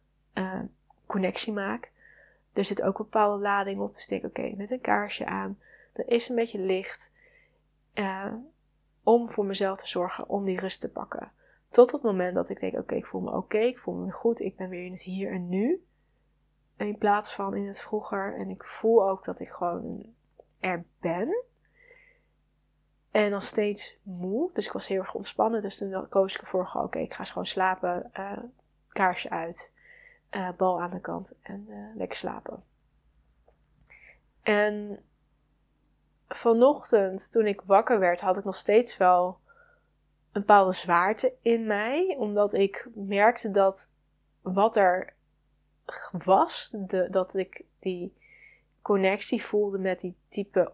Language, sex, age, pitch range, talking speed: Dutch, female, 20-39, 185-225 Hz, 165 wpm